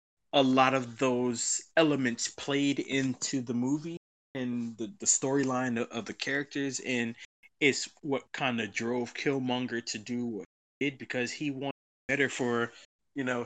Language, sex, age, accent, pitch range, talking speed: English, male, 20-39, American, 110-135 Hz, 160 wpm